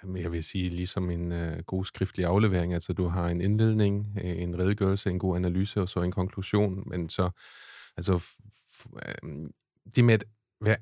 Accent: native